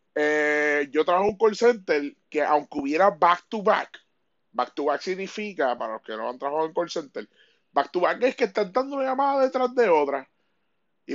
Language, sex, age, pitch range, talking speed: Spanish, male, 30-49, 160-235 Hz, 210 wpm